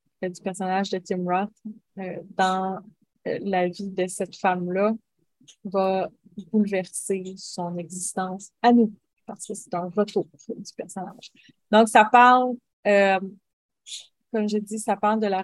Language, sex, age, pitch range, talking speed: French, female, 30-49, 190-220 Hz, 145 wpm